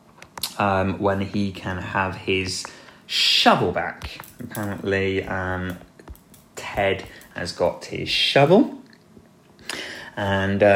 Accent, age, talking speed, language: British, 20-39, 90 wpm, English